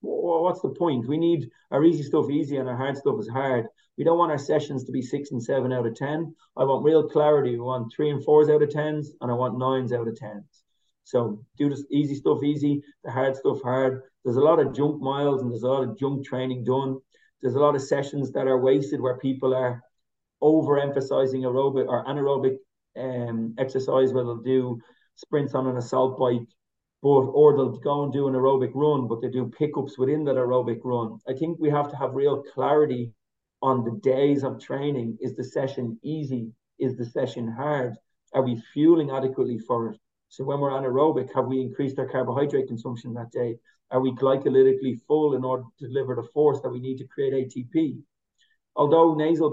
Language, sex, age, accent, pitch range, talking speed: English, male, 30-49, Irish, 125-145 Hz, 205 wpm